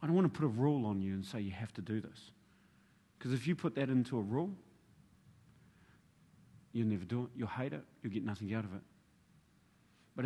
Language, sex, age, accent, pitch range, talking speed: English, male, 40-59, Australian, 120-195 Hz, 220 wpm